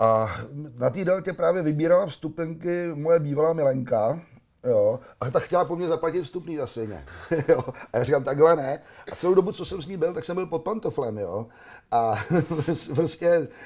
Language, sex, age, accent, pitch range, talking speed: Czech, male, 40-59, native, 135-165 Hz, 180 wpm